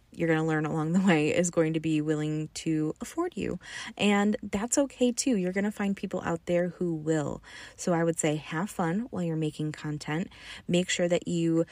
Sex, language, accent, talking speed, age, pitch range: female, English, American, 215 wpm, 20-39, 160-200 Hz